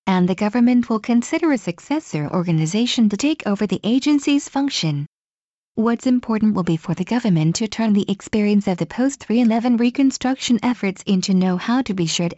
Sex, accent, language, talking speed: female, American, English, 170 wpm